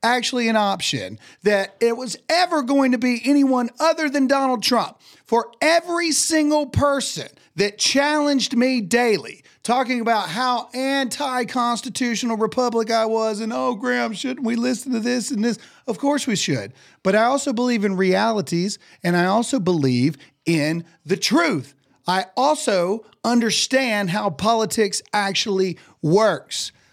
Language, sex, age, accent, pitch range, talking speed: English, male, 40-59, American, 185-255 Hz, 145 wpm